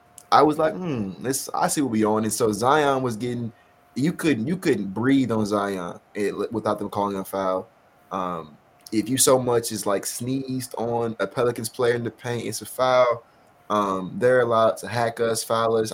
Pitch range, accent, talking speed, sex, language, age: 100-115 Hz, American, 205 wpm, male, English, 20-39